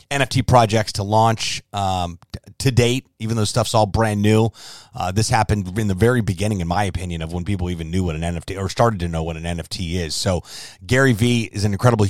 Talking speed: 225 wpm